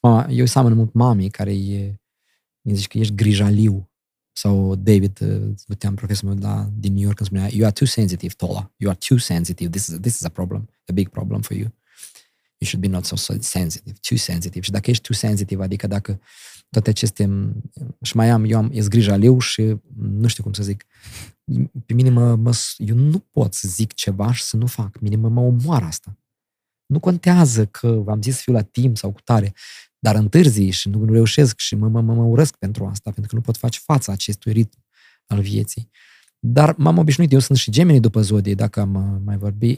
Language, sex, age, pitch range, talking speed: Romanian, male, 20-39, 100-125 Hz, 215 wpm